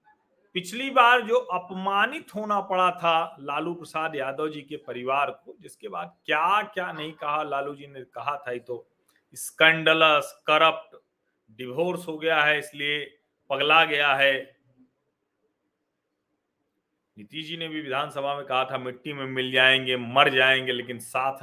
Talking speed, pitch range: 150 wpm, 130-185 Hz